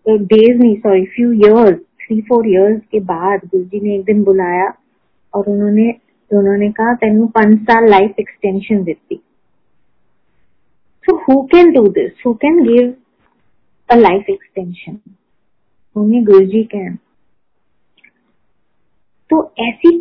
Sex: female